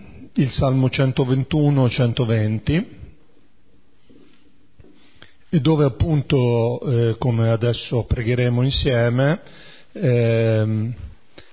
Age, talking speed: 50-69, 55 wpm